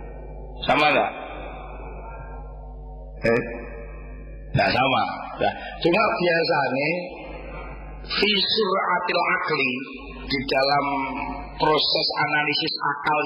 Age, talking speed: 50-69, 75 wpm